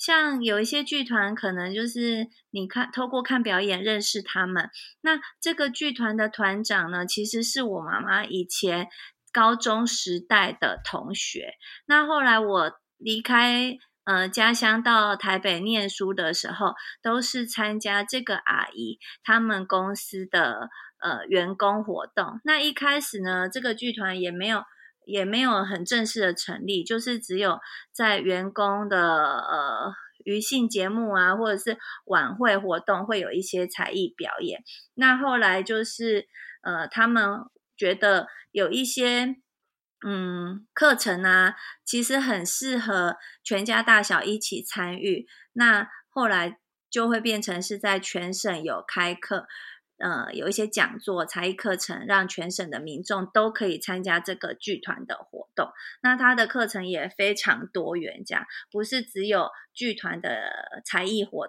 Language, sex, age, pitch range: Chinese, female, 20-39, 190-235 Hz